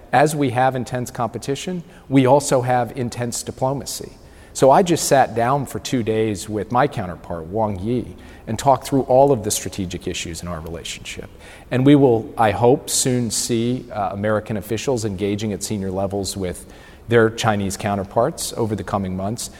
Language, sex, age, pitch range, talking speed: English, male, 40-59, 95-125 Hz, 170 wpm